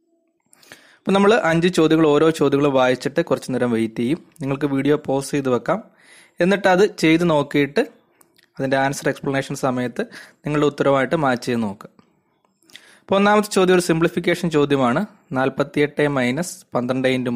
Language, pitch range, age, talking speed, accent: Malayalam, 130-175 Hz, 20-39, 130 wpm, native